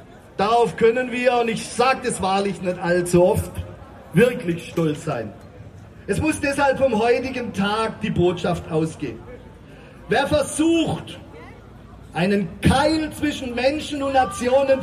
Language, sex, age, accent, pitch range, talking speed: German, male, 40-59, German, 195-285 Hz, 125 wpm